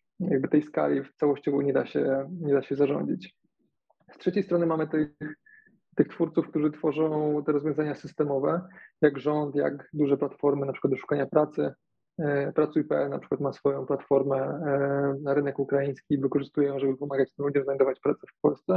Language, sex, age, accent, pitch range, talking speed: Polish, male, 20-39, native, 140-155 Hz, 170 wpm